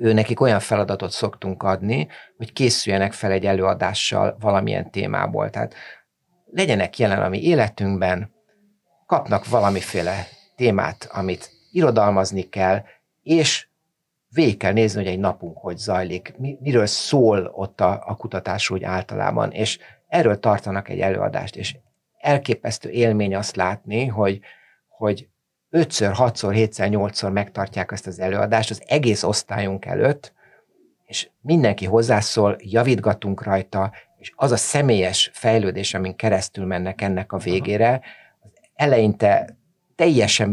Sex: male